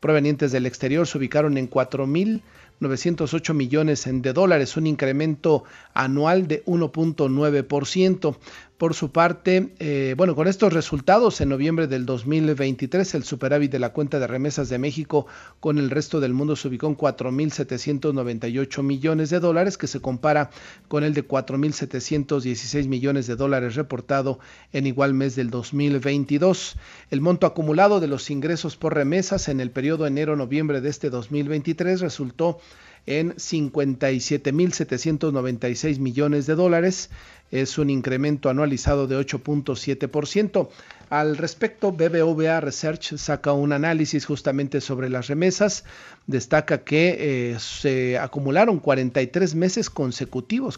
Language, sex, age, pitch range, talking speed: Spanish, male, 40-59, 135-160 Hz, 135 wpm